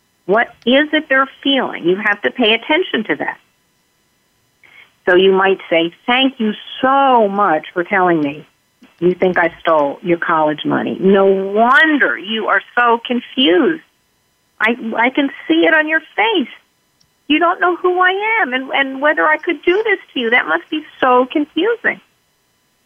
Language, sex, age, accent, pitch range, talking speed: English, female, 50-69, American, 185-305 Hz, 170 wpm